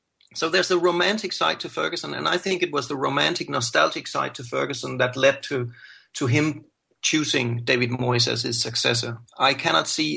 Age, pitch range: 40-59, 120-155 Hz